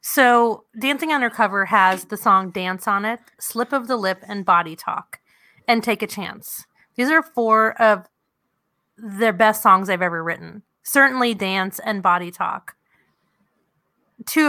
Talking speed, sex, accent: 150 wpm, female, American